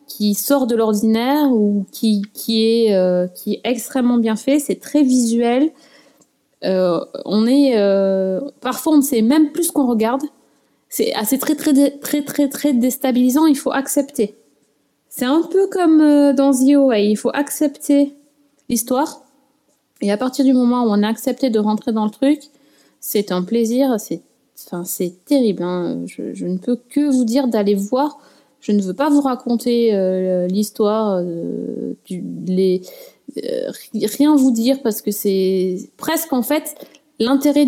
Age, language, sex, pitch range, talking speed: 20-39, French, female, 205-280 Hz, 170 wpm